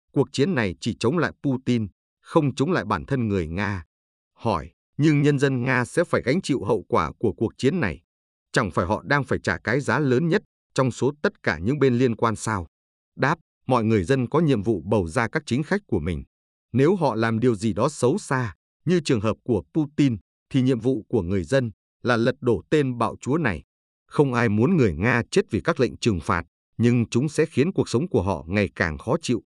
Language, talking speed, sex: Vietnamese, 225 wpm, male